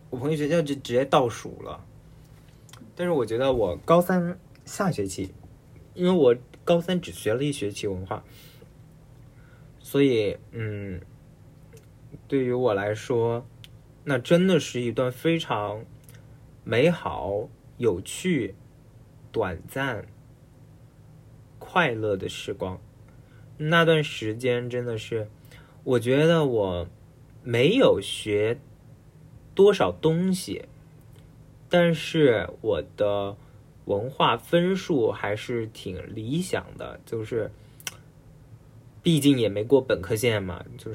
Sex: male